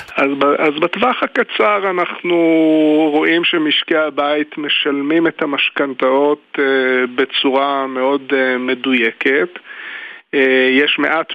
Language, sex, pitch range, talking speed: Hebrew, male, 130-160 Hz, 80 wpm